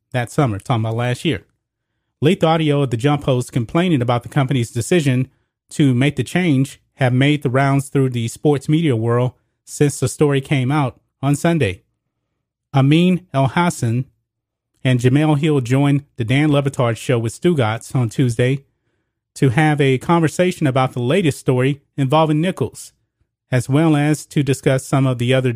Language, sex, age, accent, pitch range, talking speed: English, male, 30-49, American, 120-145 Hz, 165 wpm